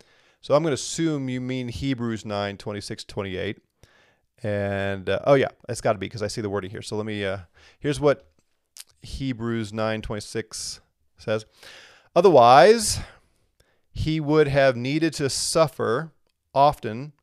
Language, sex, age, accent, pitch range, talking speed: English, male, 30-49, American, 105-135 Hz, 150 wpm